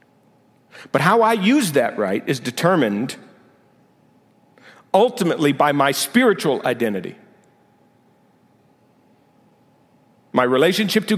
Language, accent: English, American